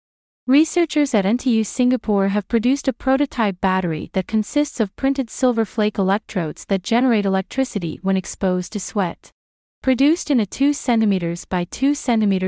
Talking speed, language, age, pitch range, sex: 150 wpm, English, 30-49, 195-250 Hz, female